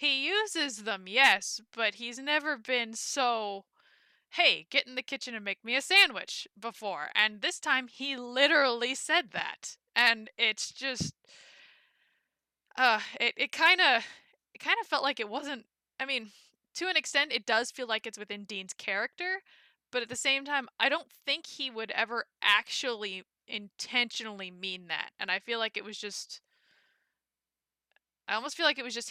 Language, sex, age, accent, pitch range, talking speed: English, female, 20-39, American, 200-270 Hz, 170 wpm